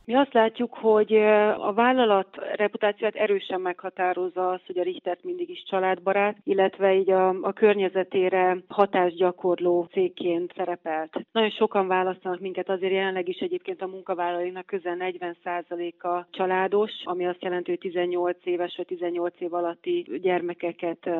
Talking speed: 135 wpm